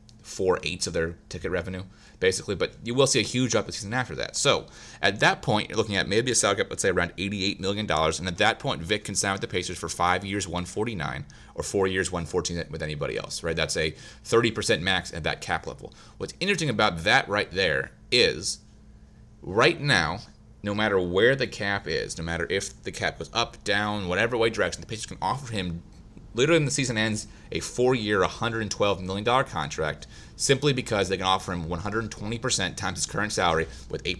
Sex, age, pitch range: male, 30-49, 90-115 Hz